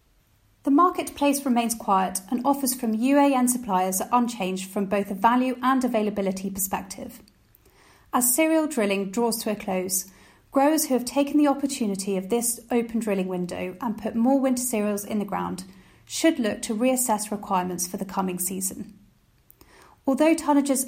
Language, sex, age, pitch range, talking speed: English, female, 30-49, 190-255 Hz, 160 wpm